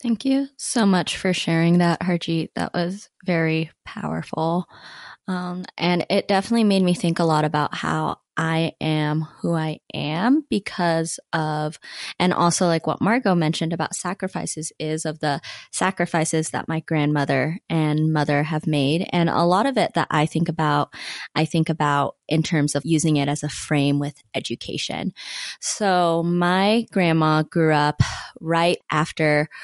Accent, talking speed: American, 160 wpm